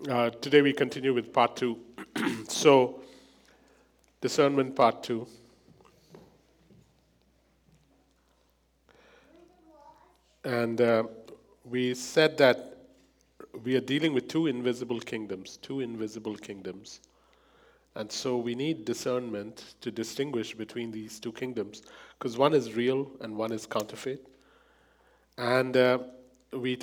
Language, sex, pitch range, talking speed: English, male, 110-130 Hz, 105 wpm